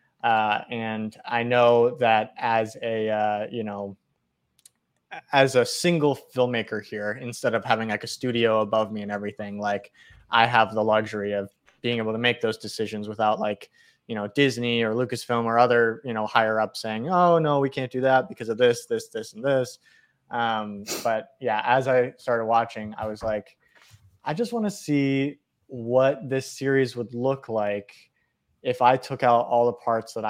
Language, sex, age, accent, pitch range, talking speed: English, male, 20-39, American, 110-130 Hz, 185 wpm